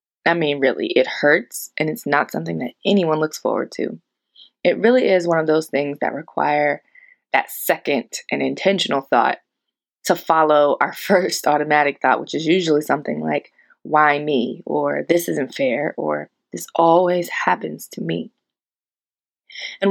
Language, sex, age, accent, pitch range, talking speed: English, female, 20-39, American, 150-200 Hz, 155 wpm